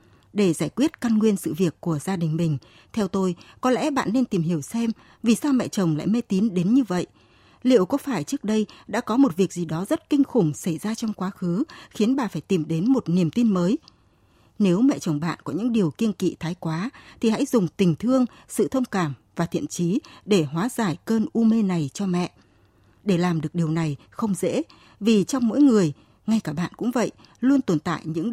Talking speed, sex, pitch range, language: 230 wpm, female, 170-240 Hz, Vietnamese